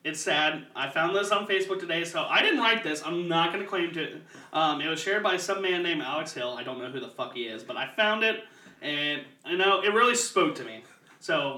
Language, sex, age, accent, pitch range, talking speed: English, male, 30-49, American, 155-210 Hz, 265 wpm